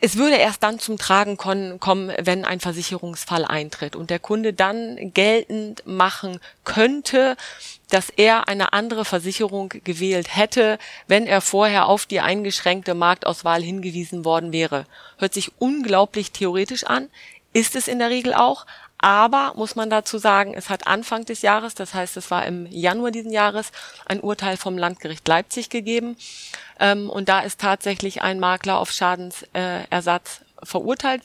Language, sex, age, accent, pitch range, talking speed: German, female, 30-49, German, 180-220 Hz, 155 wpm